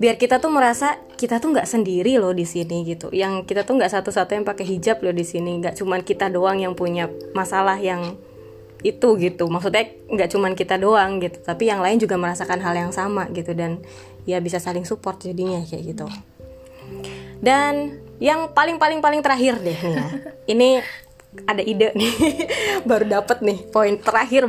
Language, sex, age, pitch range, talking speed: Indonesian, female, 20-39, 175-215 Hz, 175 wpm